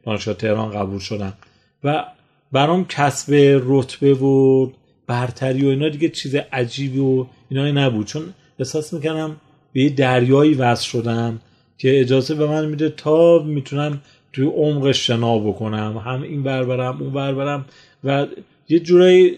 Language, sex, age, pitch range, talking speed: Persian, male, 30-49, 115-145 Hz, 135 wpm